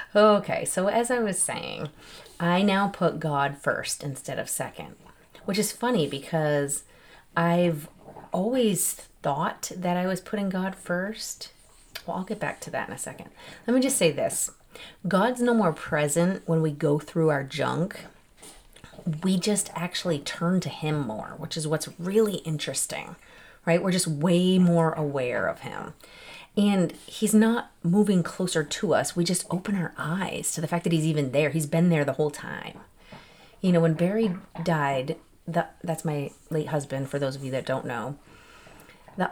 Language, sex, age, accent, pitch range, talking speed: English, female, 30-49, American, 155-190 Hz, 170 wpm